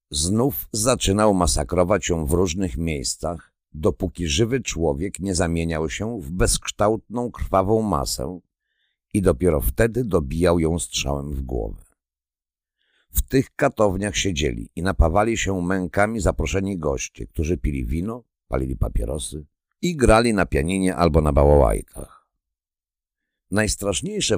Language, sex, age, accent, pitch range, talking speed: Polish, male, 50-69, native, 80-105 Hz, 120 wpm